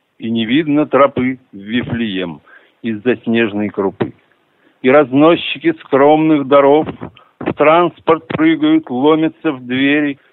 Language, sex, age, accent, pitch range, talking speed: Russian, male, 60-79, native, 130-165 Hz, 110 wpm